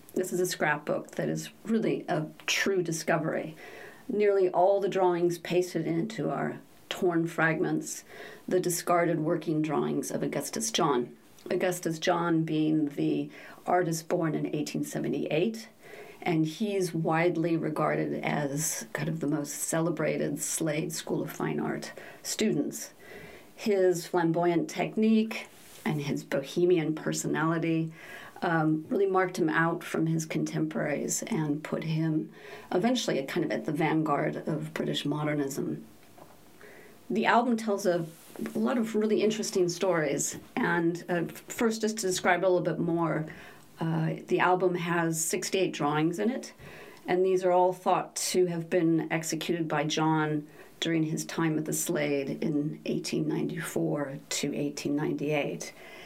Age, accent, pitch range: 40-59, American, 160-185 Hz